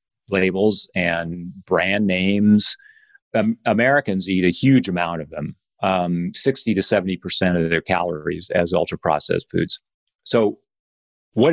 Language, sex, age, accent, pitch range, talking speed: English, male, 40-59, American, 85-105 Hz, 130 wpm